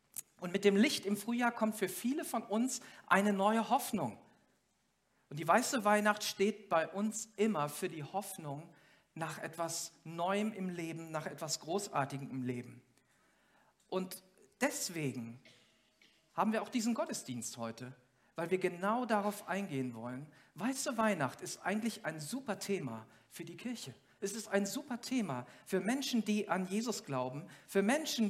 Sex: male